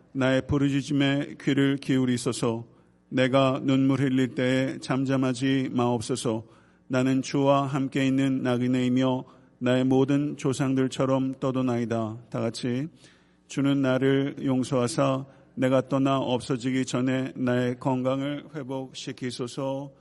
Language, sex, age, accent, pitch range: Korean, male, 50-69, native, 115-135 Hz